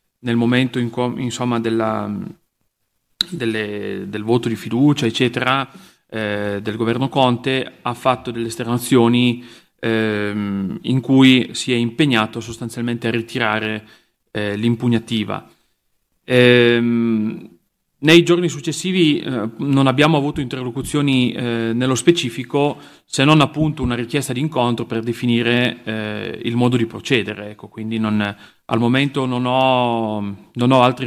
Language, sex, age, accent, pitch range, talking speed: Italian, male, 30-49, native, 115-130 Hz, 125 wpm